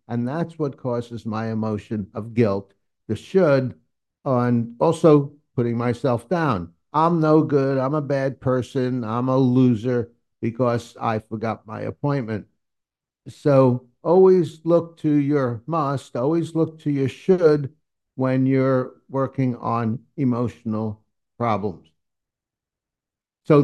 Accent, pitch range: American, 115-145 Hz